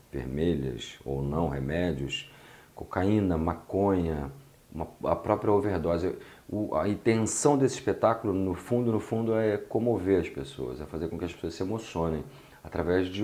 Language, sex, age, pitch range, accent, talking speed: Portuguese, male, 40-59, 80-100 Hz, Brazilian, 140 wpm